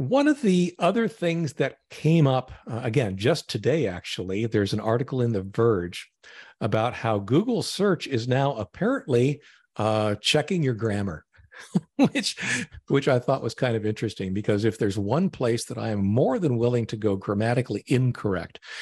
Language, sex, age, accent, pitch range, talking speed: English, male, 50-69, American, 100-130 Hz, 170 wpm